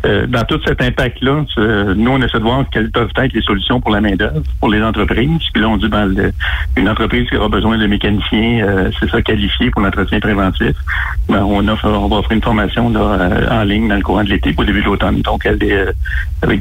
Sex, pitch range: male, 100-115 Hz